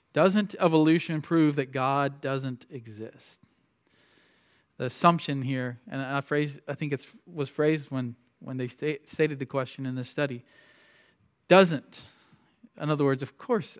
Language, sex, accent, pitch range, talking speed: English, male, American, 130-160 Hz, 150 wpm